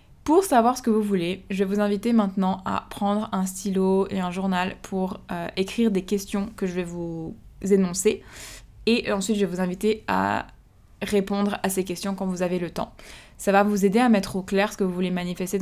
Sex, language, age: female, French, 20-39